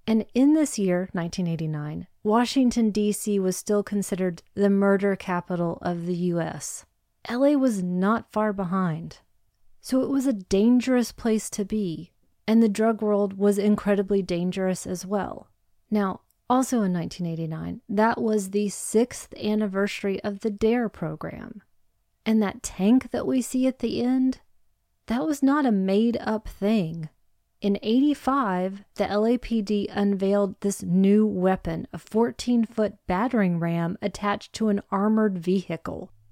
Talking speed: 135 wpm